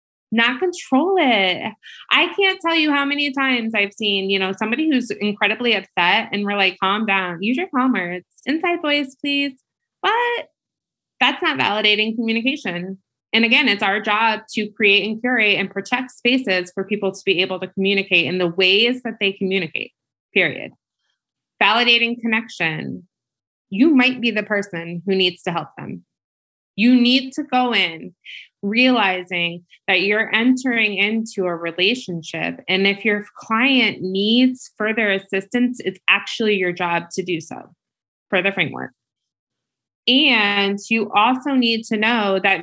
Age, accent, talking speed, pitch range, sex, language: 20-39, American, 155 wpm, 190-245 Hz, female, English